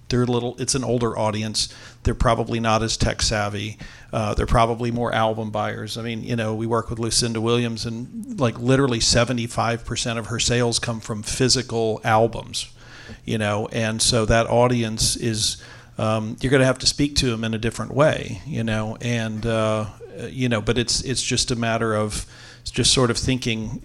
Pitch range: 110-120 Hz